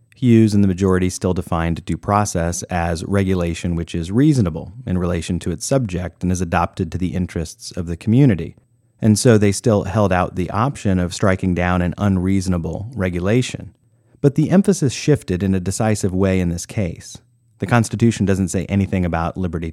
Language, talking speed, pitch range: English, 180 wpm, 90-120 Hz